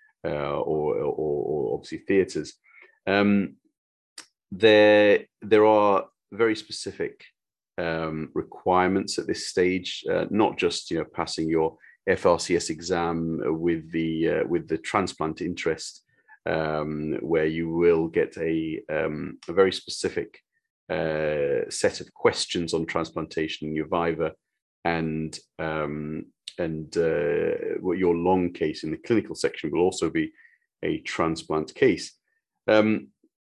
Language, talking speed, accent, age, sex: English, 130 wpm, British, 30-49, male